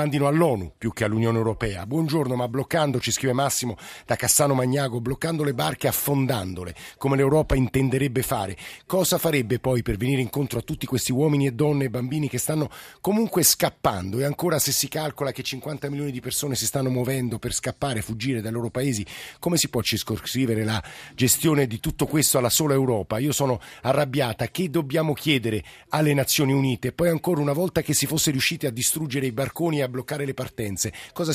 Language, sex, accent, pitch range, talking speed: Italian, male, native, 115-150 Hz, 185 wpm